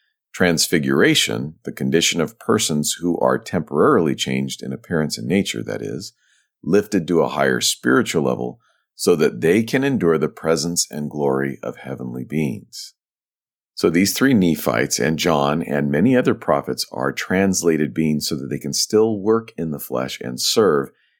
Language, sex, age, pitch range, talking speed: English, male, 50-69, 70-95 Hz, 160 wpm